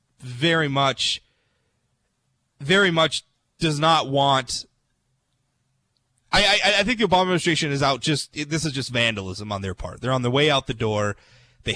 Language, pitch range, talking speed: English, 120-150 Hz, 165 wpm